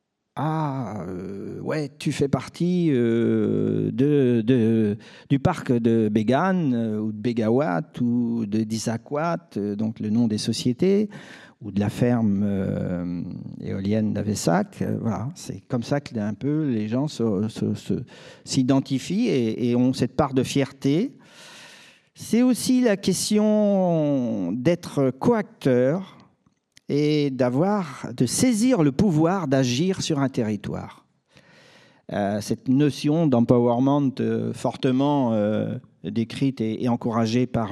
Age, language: 50-69, French